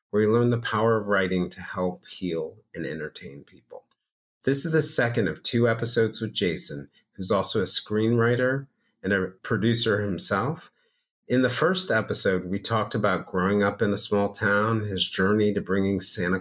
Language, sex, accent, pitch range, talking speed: English, male, American, 100-125 Hz, 175 wpm